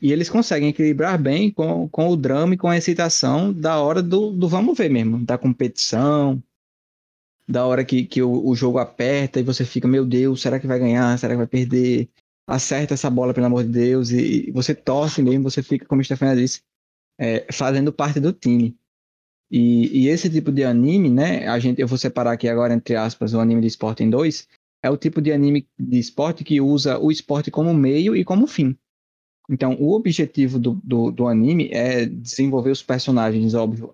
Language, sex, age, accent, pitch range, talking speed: Portuguese, male, 20-39, Brazilian, 120-145 Hz, 205 wpm